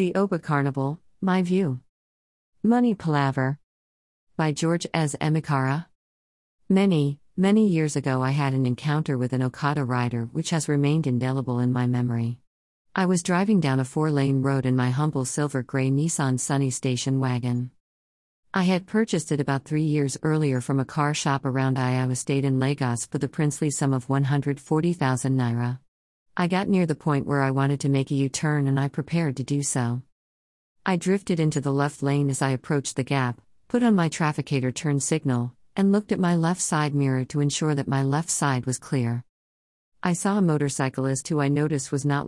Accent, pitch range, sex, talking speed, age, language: American, 130-155 Hz, female, 180 wpm, 50-69, English